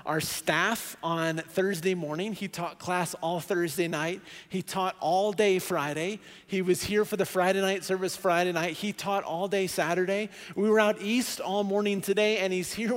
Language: English